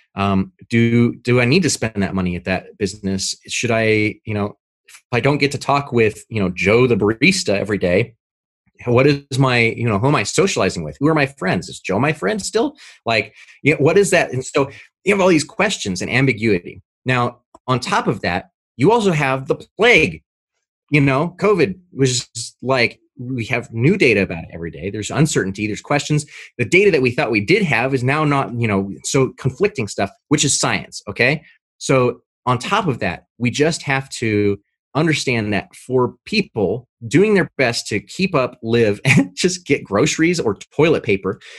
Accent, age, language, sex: American, 30-49, English, male